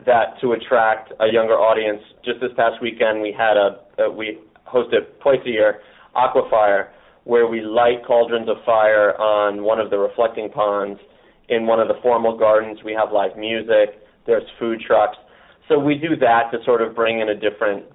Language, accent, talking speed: English, American, 185 wpm